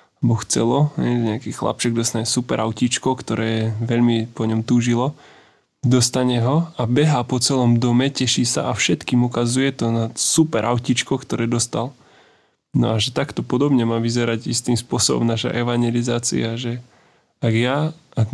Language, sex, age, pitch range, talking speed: Slovak, male, 20-39, 115-130 Hz, 145 wpm